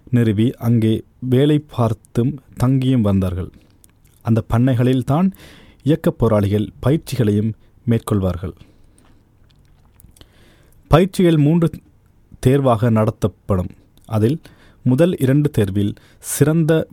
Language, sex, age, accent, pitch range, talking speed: Tamil, male, 30-49, native, 105-135 Hz, 70 wpm